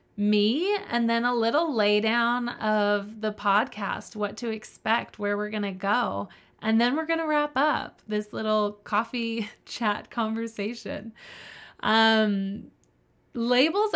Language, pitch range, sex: English, 195-230 Hz, female